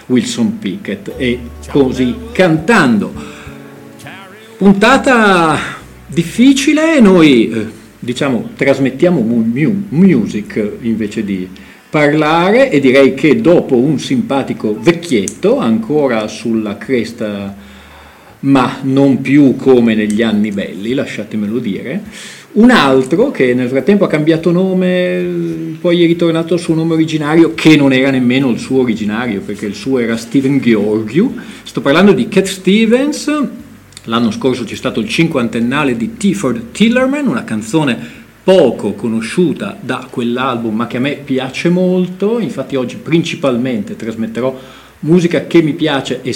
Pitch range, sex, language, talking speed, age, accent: 120-190 Hz, male, Italian, 130 wpm, 40-59, native